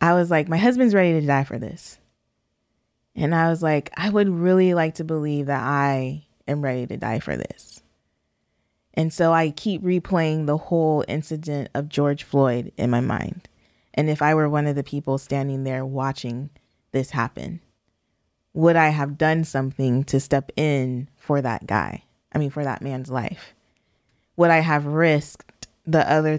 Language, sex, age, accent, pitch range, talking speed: English, female, 20-39, American, 135-160 Hz, 175 wpm